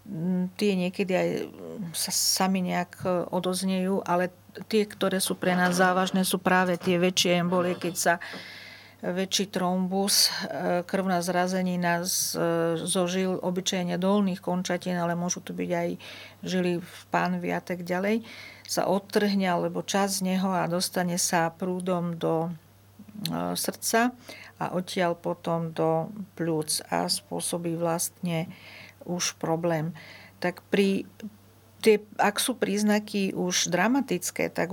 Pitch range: 170-195 Hz